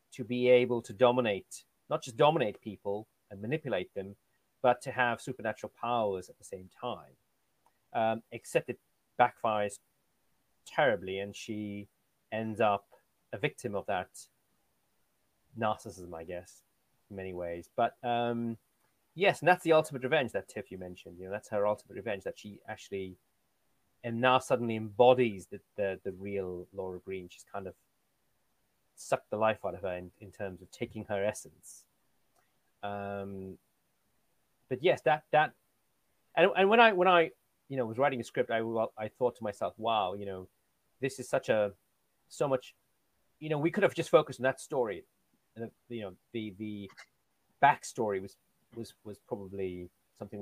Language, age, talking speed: English, 30-49, 165 wpm